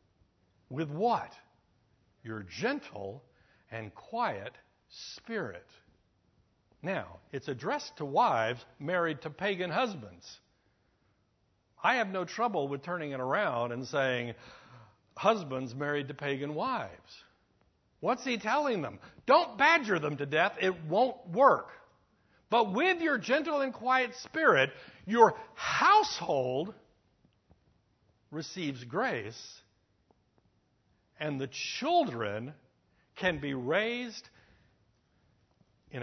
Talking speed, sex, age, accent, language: 100 wpm, male, 60-79, American, English